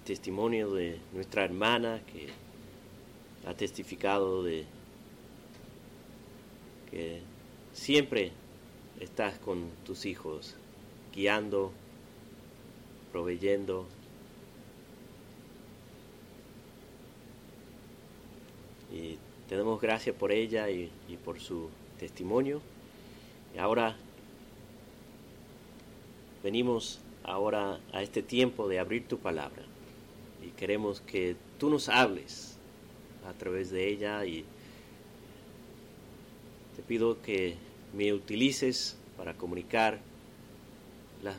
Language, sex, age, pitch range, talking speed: Spanish, male, 30-49, 95-120 Hz, 80 wpm